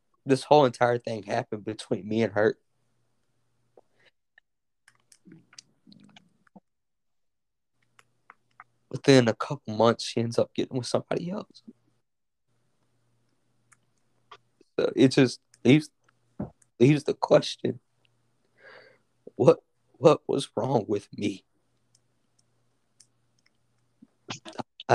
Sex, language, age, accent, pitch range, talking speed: male, English, 20-39, American, 115-130 Hz, 80 wpm